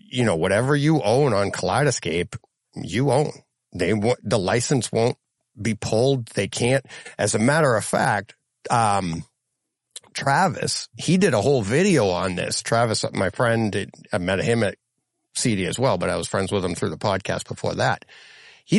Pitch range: 115-150 Hz